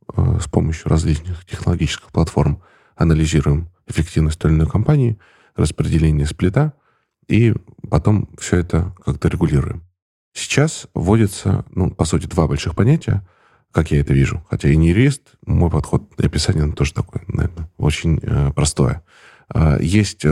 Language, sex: Russian, male